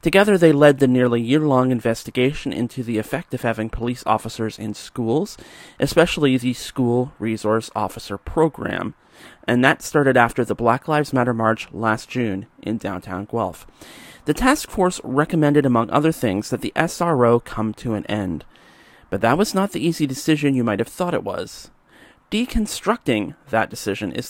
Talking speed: 165 wpm